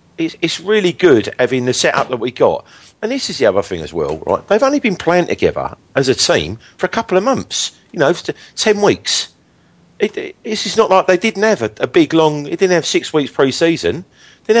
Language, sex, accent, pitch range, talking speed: English, male, British, 115-185 Hz, 225 wpm